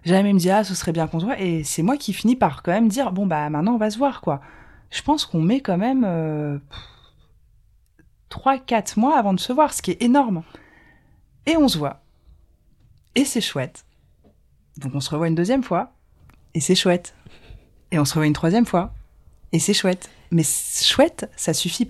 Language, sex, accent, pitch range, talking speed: French, female, French, 130-205 Hz, 220 wpm